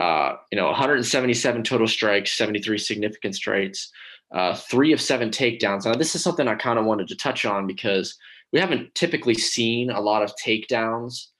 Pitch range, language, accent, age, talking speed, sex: 100-120 Hz, English, American, 20-39, 180 wpm, male